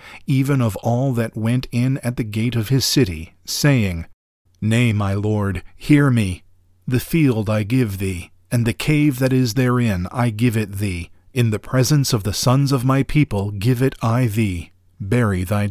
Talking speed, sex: 185 wpm, male